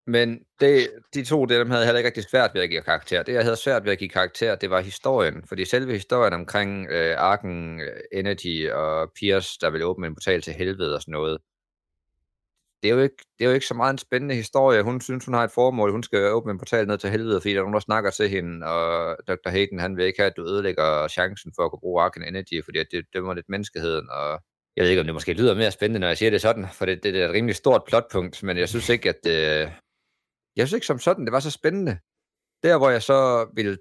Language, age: Danish, 30-49